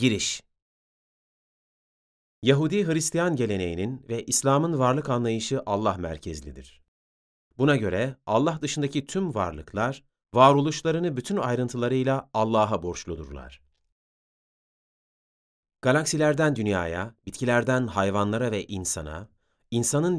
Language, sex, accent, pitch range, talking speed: Turkish, male, native, 95-145 Hz, 85 wpm